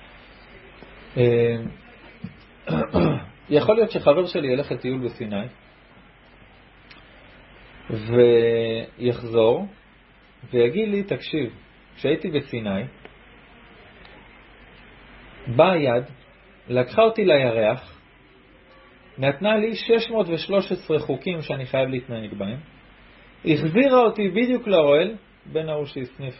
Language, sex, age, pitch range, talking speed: Hebrew, male, 40-59, 120-200 Hz, 75 wpm